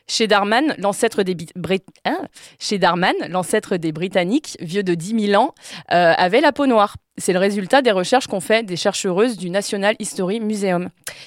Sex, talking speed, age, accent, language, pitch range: female, 180 wpm, 20-39, French, French, 190-240 Hz